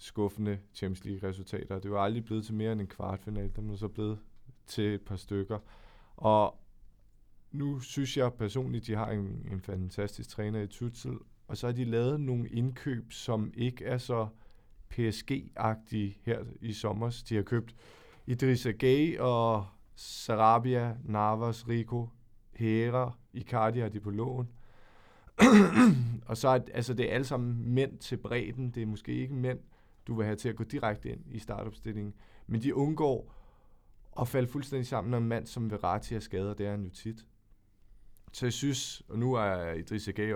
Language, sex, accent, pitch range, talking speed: Danish, male, native, 100-120 Hz, 170 wpm